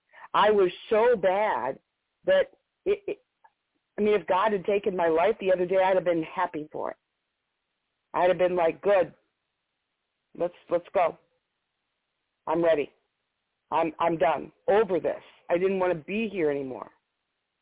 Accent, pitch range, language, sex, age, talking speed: American, 175-250 Hz, English, female, 50-69, 155 wpm